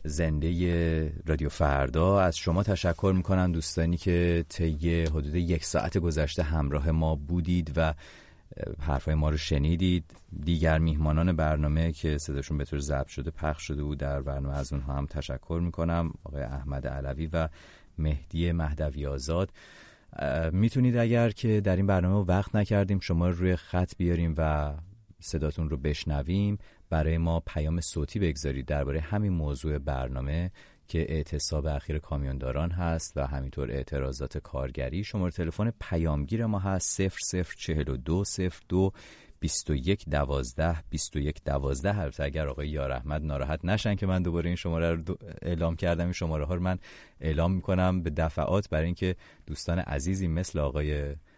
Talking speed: 150 wpm